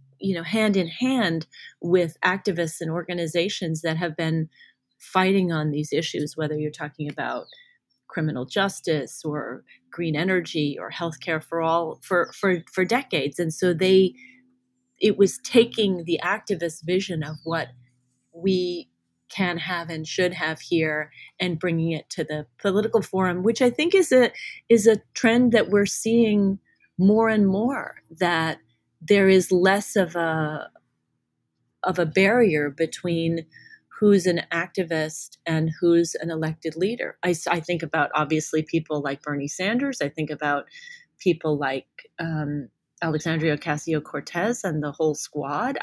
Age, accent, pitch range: 30-49, American, 160-195 Hz